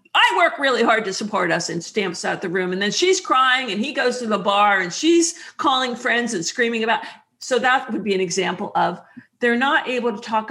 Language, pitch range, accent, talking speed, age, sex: English, 175-240 Hz, American, 235 wpm, 50-69, female